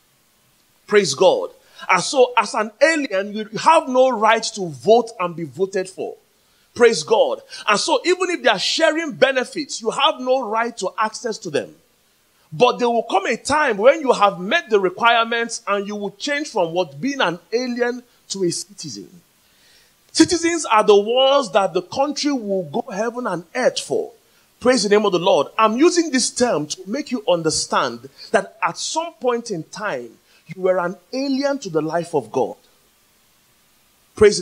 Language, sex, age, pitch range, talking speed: English, male, 40-59, 185-275 Hz, 180 wpm